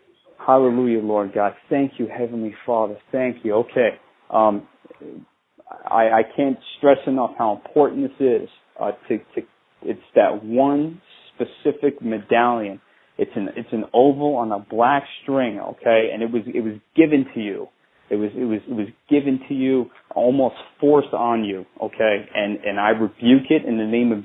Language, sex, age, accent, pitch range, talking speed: English, male, 30-49, American, 115-145 Hz, 170 wpm